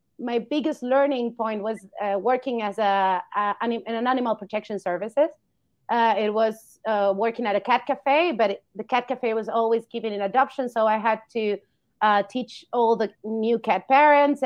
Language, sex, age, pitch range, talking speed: English, female, 30-49, 205-265 Hz, 185 wpm